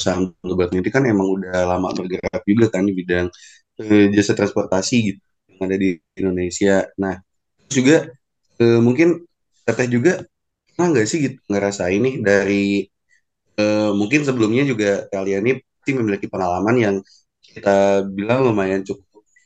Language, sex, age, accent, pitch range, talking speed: Indonesian, male, 20-39, native, 100-120 Hz, 140 wpm